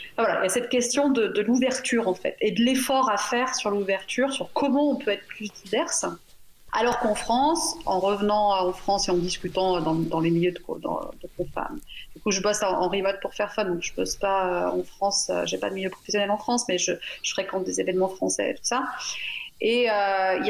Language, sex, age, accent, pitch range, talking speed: French, female, 30-49, French, 190-245 Hz, 240 wpm